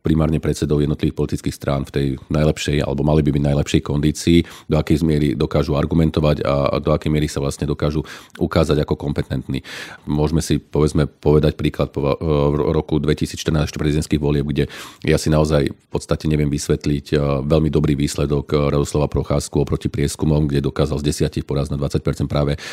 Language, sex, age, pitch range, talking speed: Slovak, male, 40-59, 75-80 Hz, 165 wpm